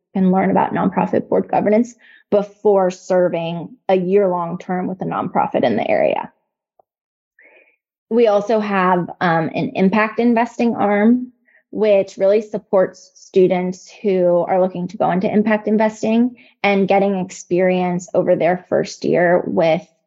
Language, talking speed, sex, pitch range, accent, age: English, 140 wpm, female, 180-210 Hz, American, 20-39